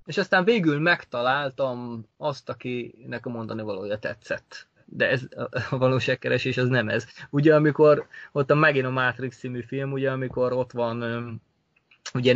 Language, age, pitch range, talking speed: Hungarian, 20-39, 120-145 Hz, 145 wpm